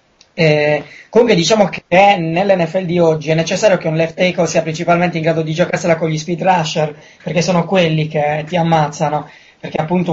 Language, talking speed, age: Italian, 185 wpm, 20-39